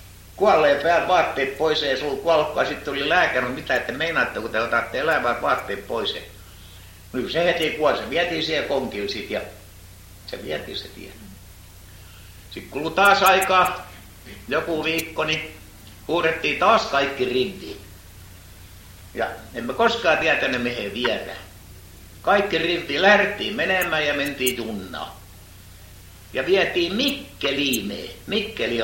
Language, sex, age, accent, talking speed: Finnish, male, 60-79, native, 120 wpm